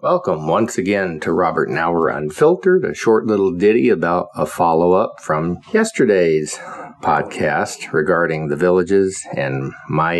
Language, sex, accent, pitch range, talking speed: English, male, American, 80-100 Hz, 135 wpm